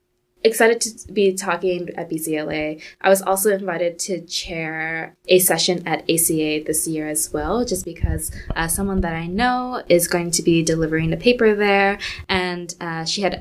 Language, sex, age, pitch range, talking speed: English, female, 10-29, 170-195 Hz, 175 wpm